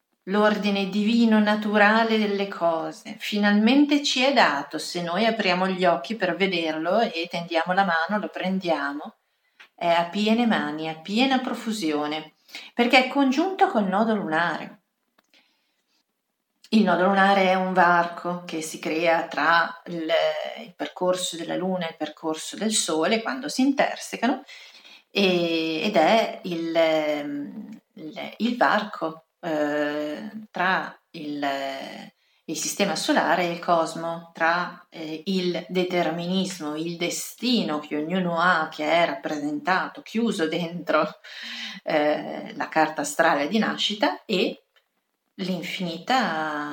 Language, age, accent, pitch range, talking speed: Italian, 40-59, native, 160-220 Hz, 120 wpm